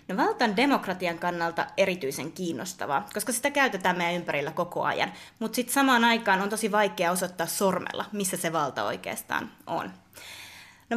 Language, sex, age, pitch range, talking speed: Finnish, female, 20-39, 170-220 Hz, 155 wpm